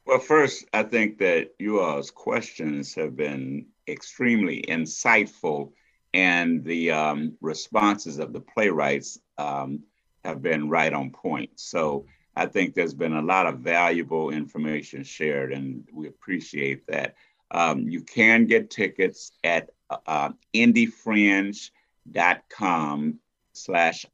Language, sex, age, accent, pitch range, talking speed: English, male, 60-79, American, 75-105 Hz, 120 wpm